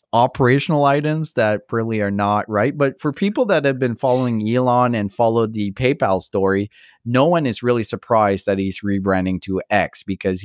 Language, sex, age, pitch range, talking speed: English, male, 30-49, 100-130 Hz, 180 wpm